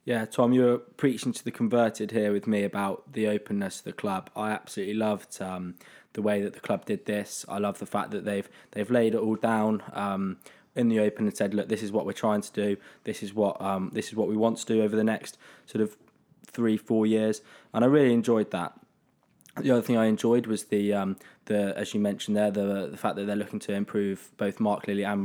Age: 20-39